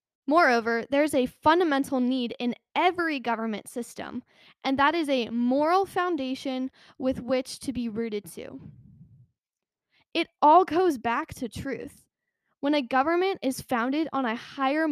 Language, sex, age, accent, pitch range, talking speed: English, female, 10-29, American, 235-295 Hz, 145 wpm